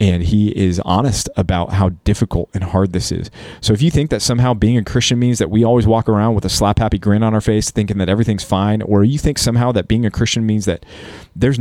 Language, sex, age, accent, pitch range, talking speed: English, male, 30-49, American, 95-110 Hz, 255 wpm